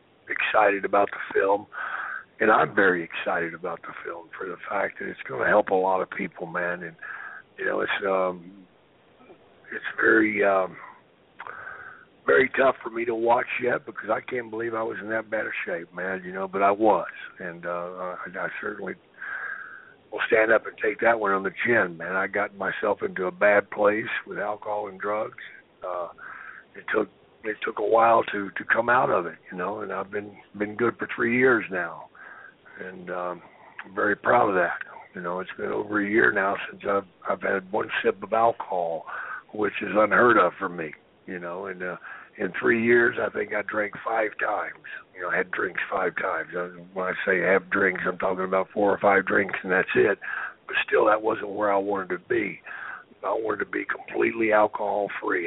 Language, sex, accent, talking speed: English, male, American, 200 wpm